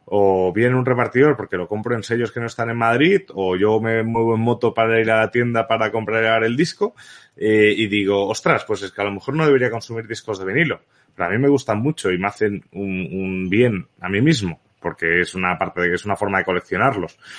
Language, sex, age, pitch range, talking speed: Spanish, male, 30-49, 95-120 Hz, 250 wpm